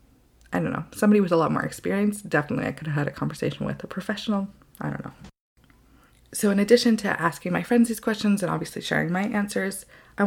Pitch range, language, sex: 165-200 Hz, English, female